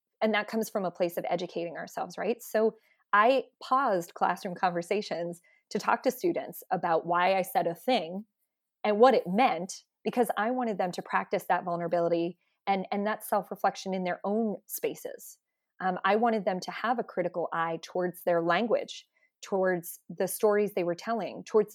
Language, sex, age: English, female, 20-39